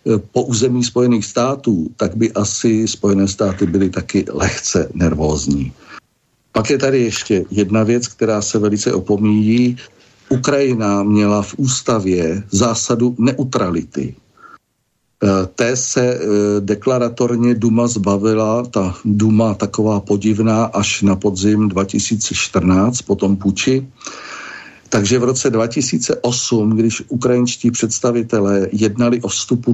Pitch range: 105-120 Hz